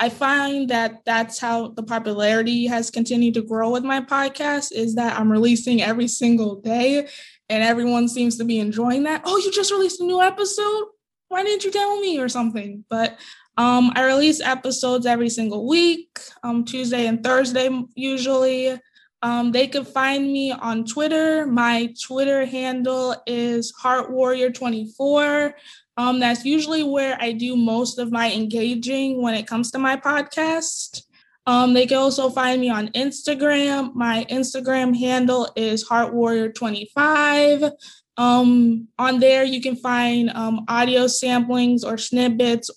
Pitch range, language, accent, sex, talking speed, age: 230-265 Hz, English, American, female, 150 wpm, 20-39